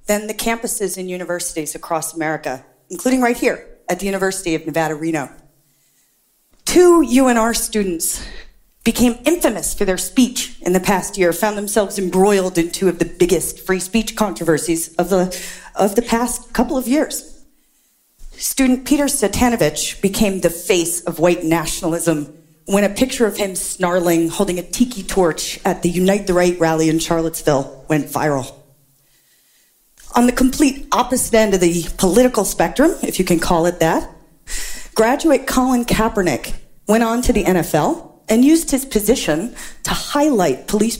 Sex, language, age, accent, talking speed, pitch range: female, English, 40-59, American, 155 wpm, 170-240 Hz